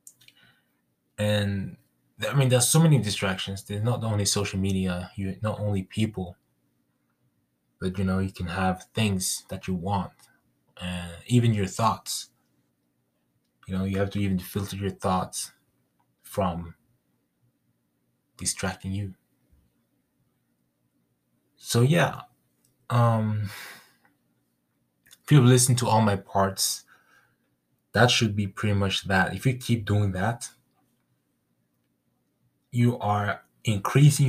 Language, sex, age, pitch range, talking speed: English, male, 20-39, 85-110 Hz, 115 wpm